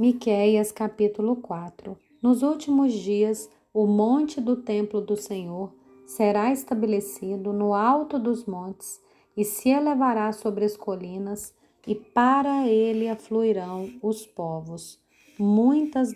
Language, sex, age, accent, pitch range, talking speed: Portuguese, female, 30-49, Brazilian, 190-235 Hz, 115 wpm